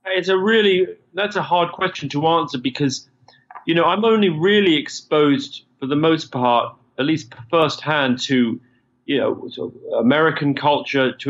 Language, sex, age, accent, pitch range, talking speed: English, male, 30-49, British, 130-170 Hz, 155 wpm